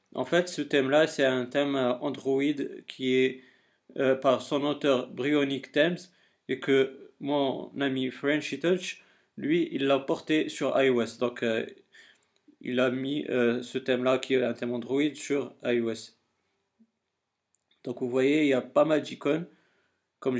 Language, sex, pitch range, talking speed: French, male, 130-150 Hz, 155 wpm